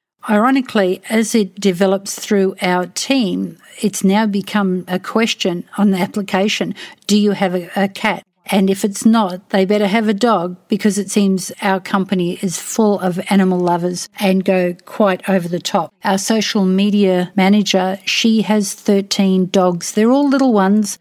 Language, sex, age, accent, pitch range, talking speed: English, female, 50-69, Australian, 185-210 Hz, 165 wpm